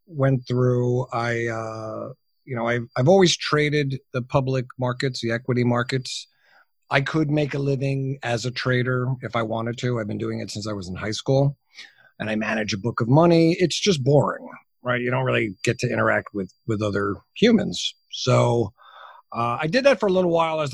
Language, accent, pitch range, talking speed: English, American, 125-160 Hz, 200 wpm